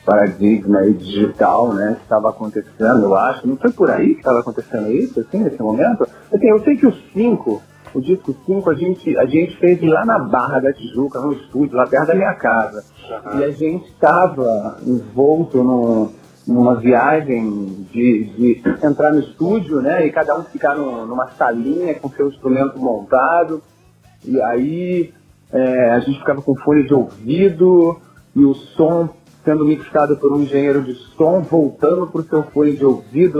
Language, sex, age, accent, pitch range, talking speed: Portuguese, male, 40-59, Brazilian, 120-170 Hz, 175 wpm